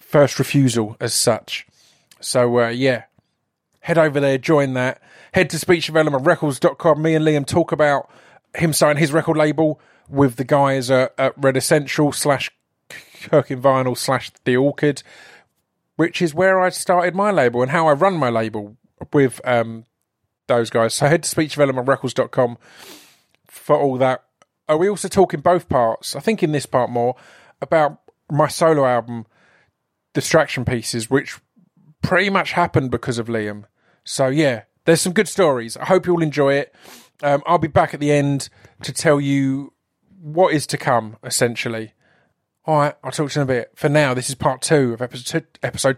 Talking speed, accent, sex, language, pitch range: 175 wpm, British, male, English, 125-160 Hz